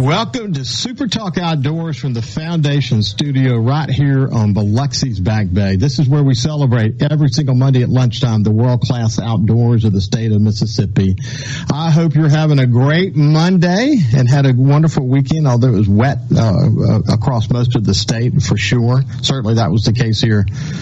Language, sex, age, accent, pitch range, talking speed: English, male, 50-69, American, 115-145 Hz, 180 wpm